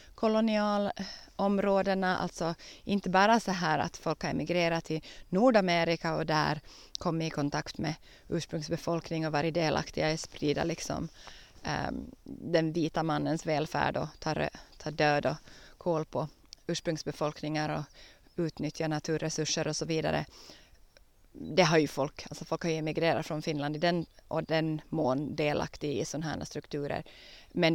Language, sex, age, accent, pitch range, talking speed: Swedish, female, 30-49, native, 155-205 Hz, 140 wpm